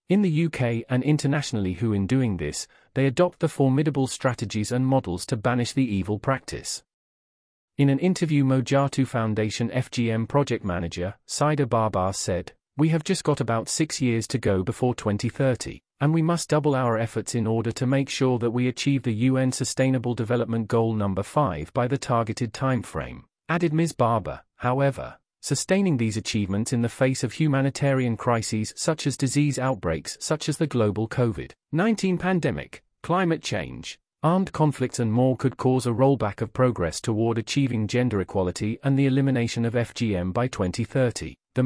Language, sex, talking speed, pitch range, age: English, male, 165 wpm, 110-140 Hz, 40-59